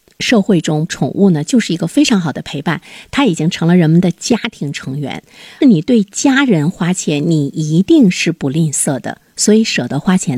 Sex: female